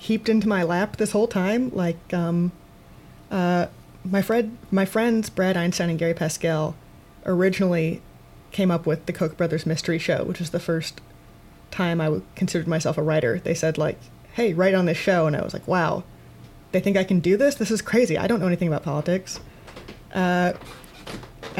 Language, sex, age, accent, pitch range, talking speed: English, female, 20-39, American, 165-190 Hz, 185 wpm